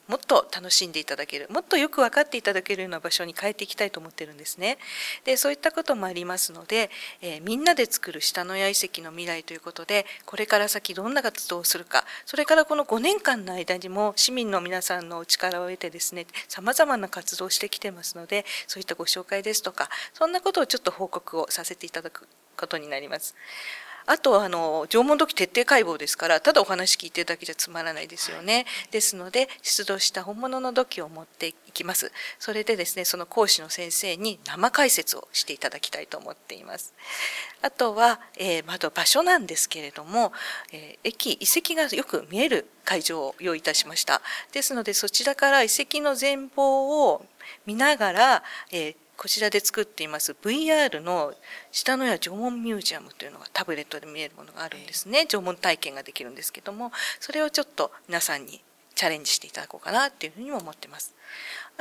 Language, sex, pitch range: Japanese, female, 175-275 Hz